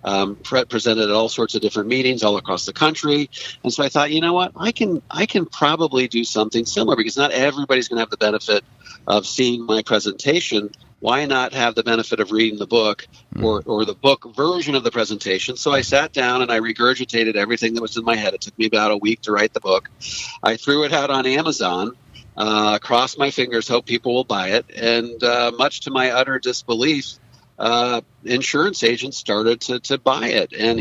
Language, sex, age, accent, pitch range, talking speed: English, male, 50-69, American, 110-135 Hz, 215 wpm